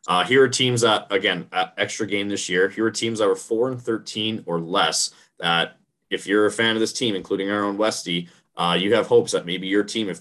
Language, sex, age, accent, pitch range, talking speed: English, male, 20-39, American, 90-110 Hz, 235 wpm